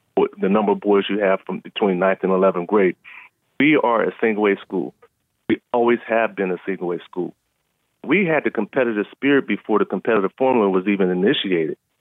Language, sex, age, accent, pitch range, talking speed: English, male, 40-59, American, 100-125 Hz, 180 wpm